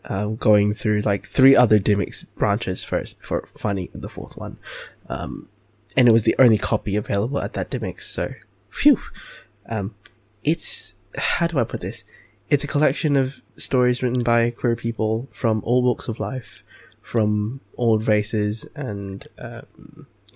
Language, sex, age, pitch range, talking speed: English, male, 20-39, 105-130 Hz, 155 wpm